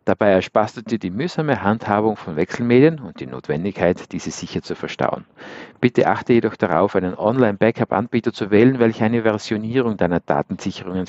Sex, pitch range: male, 90-130 Hz